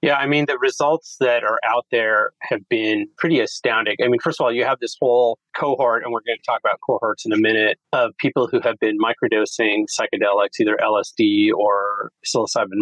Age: 30-49